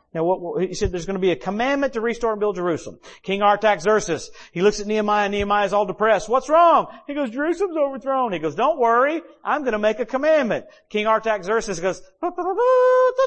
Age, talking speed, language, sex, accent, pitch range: 50-69, 225 wpm, English, male, American, 150-220 Hz